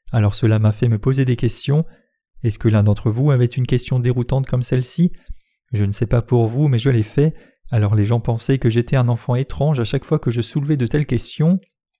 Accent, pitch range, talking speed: French, 120-140 Hz, 235 wpm